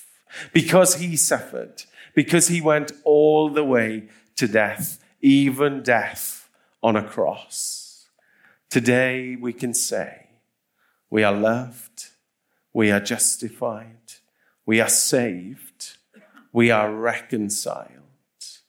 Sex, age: male, 40-59